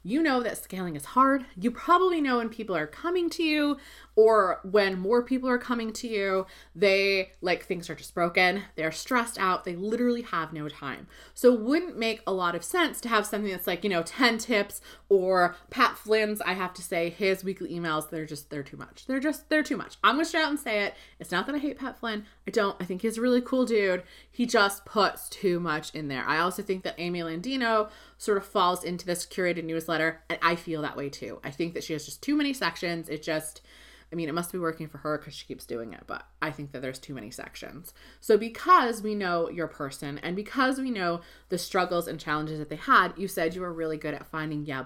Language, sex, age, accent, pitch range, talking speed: English, female, 20-39, American, 170-240 Hz, 240 wpm